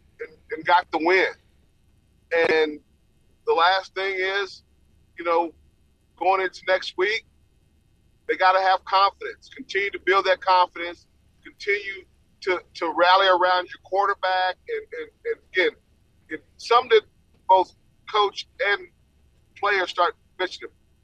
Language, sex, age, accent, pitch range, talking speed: English, male, 40-59, American, 170-210 Hz, 130 wpm